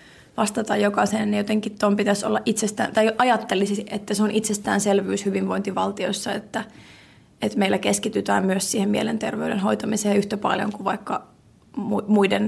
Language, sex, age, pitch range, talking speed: Finnish, female, 20-39, 195-225 Hz, 135 wpm